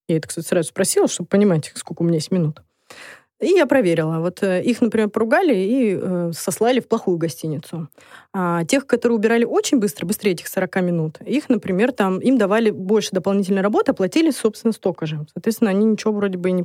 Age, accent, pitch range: 20-39, native, 175-225 Hz